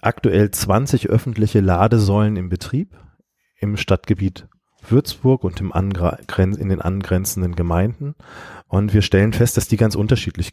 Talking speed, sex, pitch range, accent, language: 135 wpm, male, 90-105 Hz, German, German